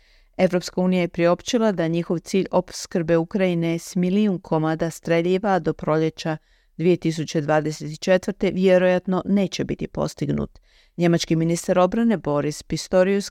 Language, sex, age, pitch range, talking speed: Croatian, female, 40-59, 165-195 Hz, 115 wpm